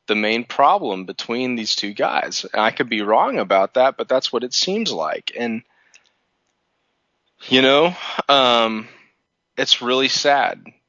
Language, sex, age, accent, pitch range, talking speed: English, male, 20-39, American, 105-125 Hz, 150 wpm